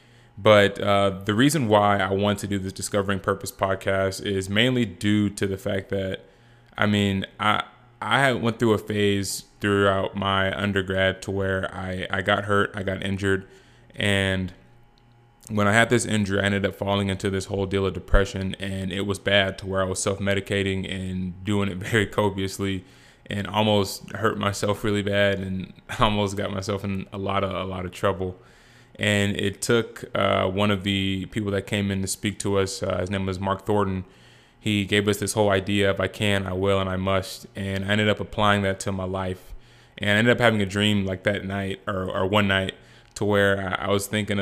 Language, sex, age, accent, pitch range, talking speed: English, male, 20-39, American, 95-105 Hz, 205 wpm